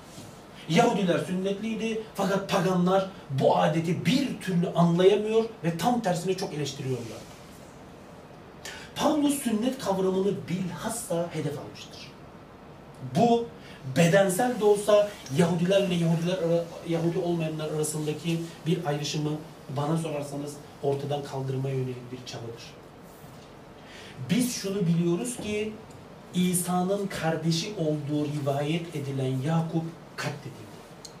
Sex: male